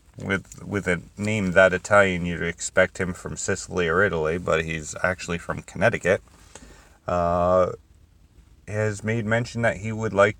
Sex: male